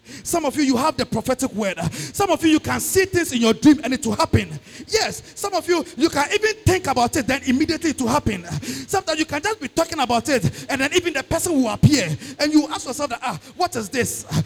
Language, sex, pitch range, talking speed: English, male, 245-330 Hz, 250 wpm